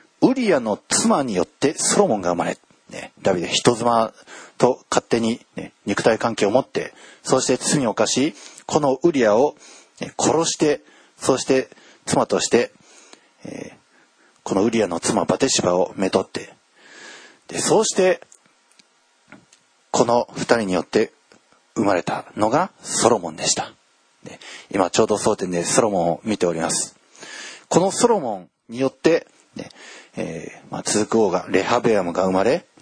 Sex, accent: male, native